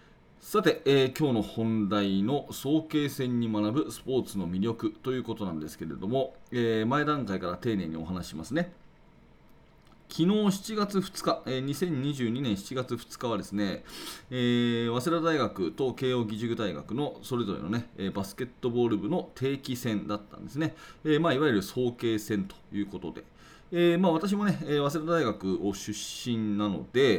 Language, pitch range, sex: Japanese, 100-145 Hz, male